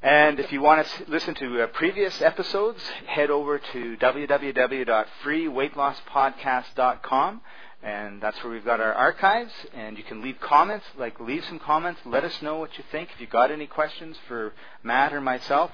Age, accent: 40-59, American